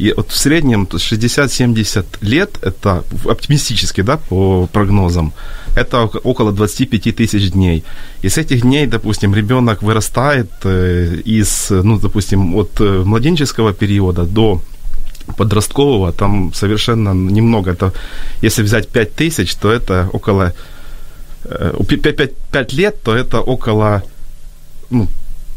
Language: Ukrainian